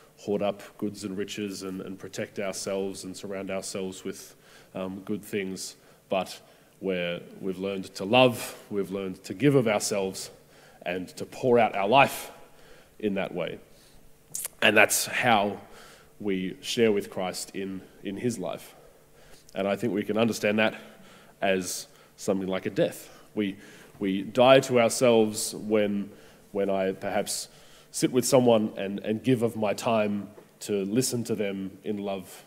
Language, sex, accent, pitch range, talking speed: English, male, Australian, 95-110 Hz, 155 wpm